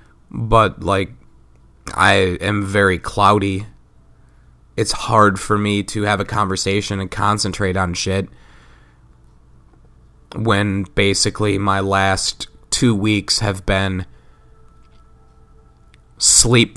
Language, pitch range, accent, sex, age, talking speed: English, 95-110 Hz, American, male, 30-49, 95 wpm